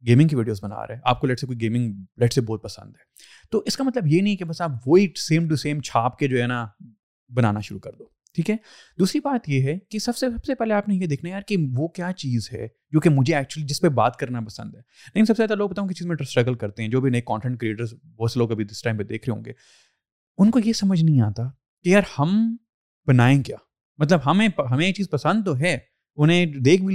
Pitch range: 125-185 Hz